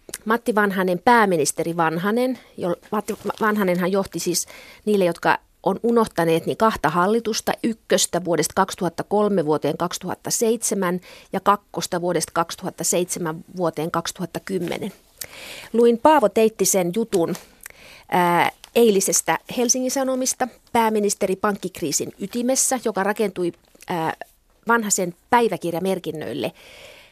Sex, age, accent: female, 30-49, native